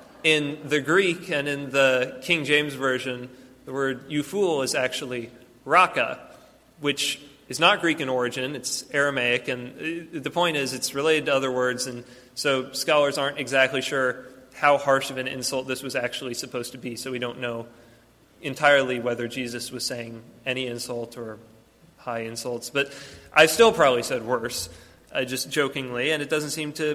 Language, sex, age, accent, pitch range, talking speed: English, male, 30-49, American, 130-150 Hz, 170 wpm